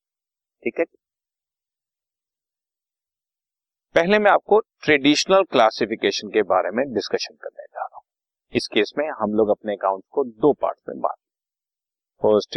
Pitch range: 135-200 Hz